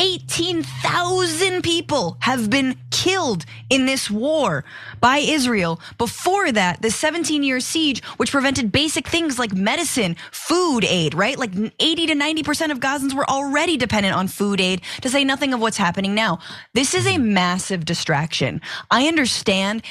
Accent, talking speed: American, 155 wpm